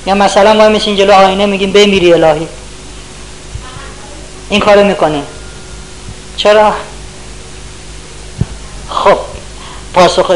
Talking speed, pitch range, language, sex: 85 wpm, 165-205 Hz, Persian, female